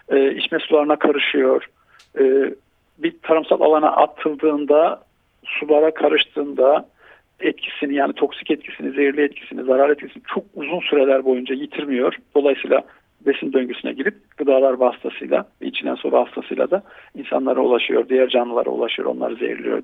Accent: native